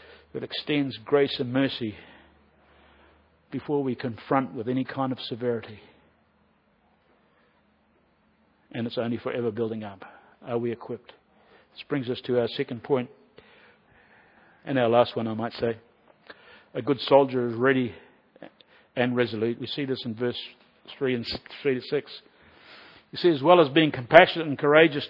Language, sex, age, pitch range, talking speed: English, male, 50-69, 125-185 Hz, 150 wpm